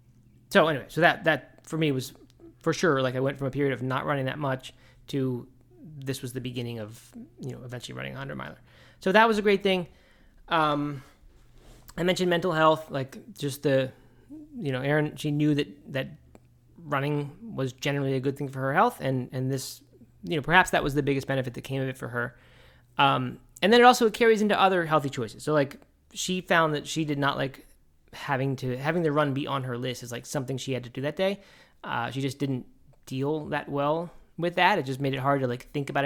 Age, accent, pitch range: 20-39, American, 130-165 Hz